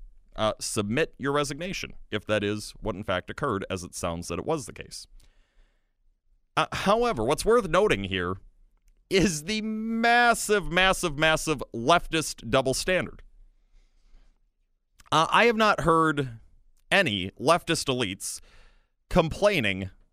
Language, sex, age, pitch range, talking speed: English, male, 30-49, 95-160 Hz, 125 wpm